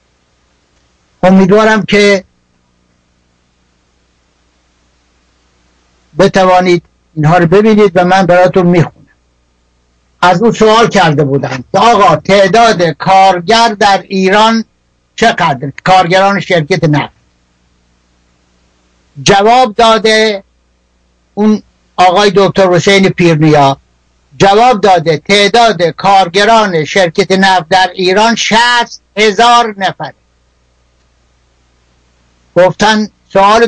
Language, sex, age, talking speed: Persian, male, 60-79, 75 wpm